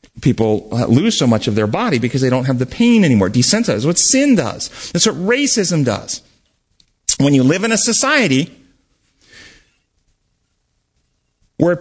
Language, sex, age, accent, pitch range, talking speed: English, male, 40-59, American, 125-205 Hz, 150 wpm